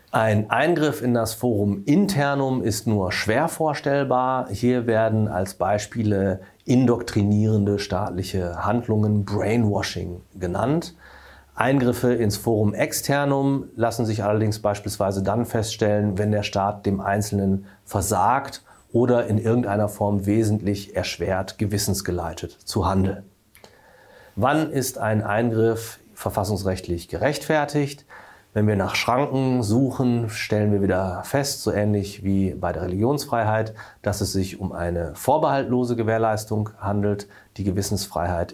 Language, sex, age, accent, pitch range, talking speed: German, male, 40-59, German, 100-130 Hz, 115 wpm